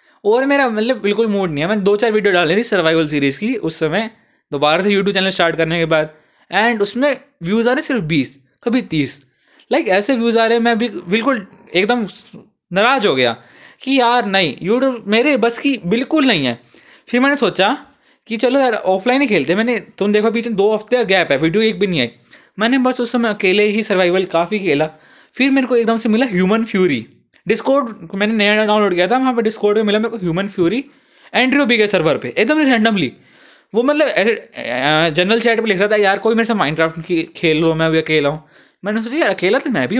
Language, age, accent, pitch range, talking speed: Hindi, 20-39, native, 170-235 Hz, 225 wpm